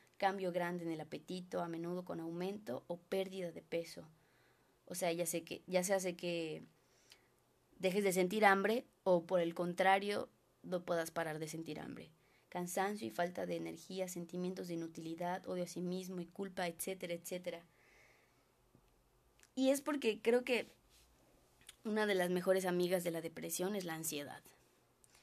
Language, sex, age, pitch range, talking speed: Spanish, female, 20-39, 165-195 Hz, 160 wpm